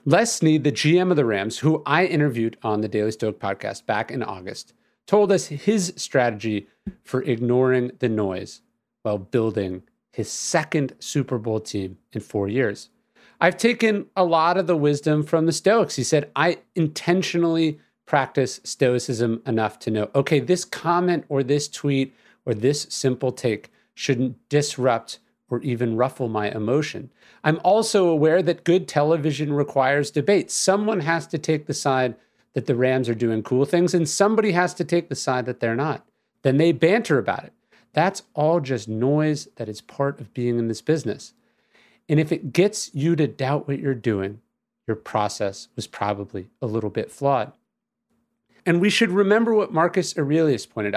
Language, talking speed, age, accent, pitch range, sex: English, 170 wpm, 40-59, American, 125-175 Hz, male